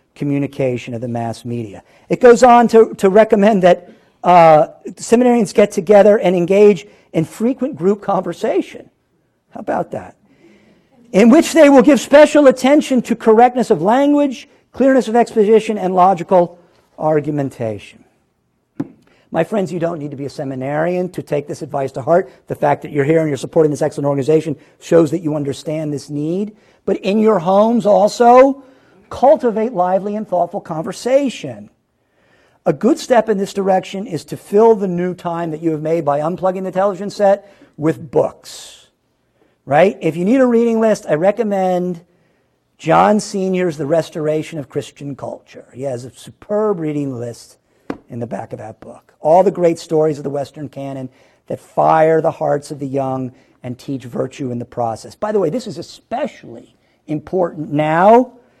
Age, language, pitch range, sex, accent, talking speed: 50-69, English, 150-215 Hz, male, American, 170 wpm